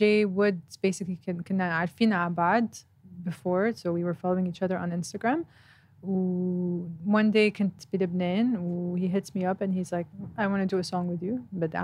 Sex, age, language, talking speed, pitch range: female, 20-39, Arabic, 205 wpm, 175-205 Hz